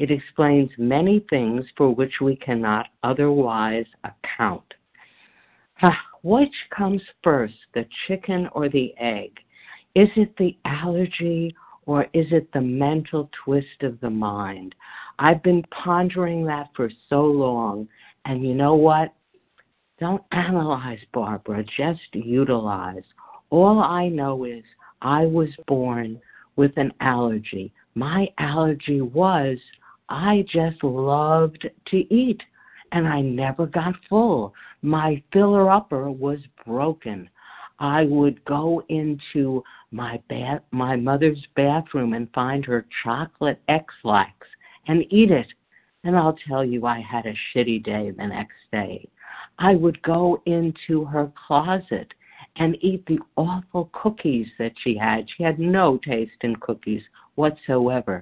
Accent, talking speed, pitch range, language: American, 130 wpm, 125-170 Hz, English